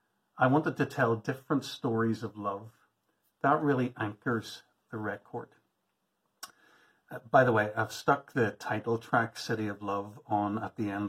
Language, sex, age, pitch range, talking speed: English, male, 50-69, 105-125 Hz, 155 wpm